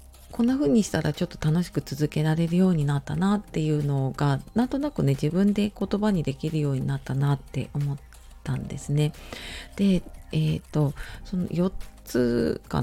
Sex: female